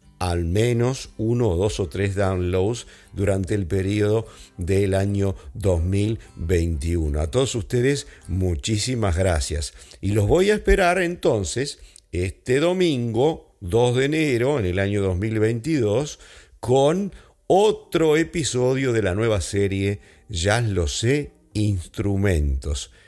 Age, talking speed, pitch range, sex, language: 50-69, 115 wpm, 90-125 Hz, male, English